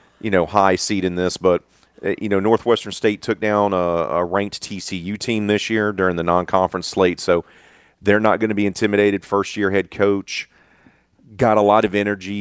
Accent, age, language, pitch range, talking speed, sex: American, 40-59, English, 90-115 Hz, 190 wpm, male